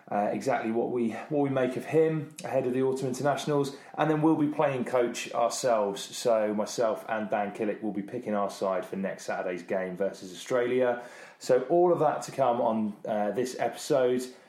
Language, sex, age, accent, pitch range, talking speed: English, male, 30-49, British, 105-130 Hz, 195 wpm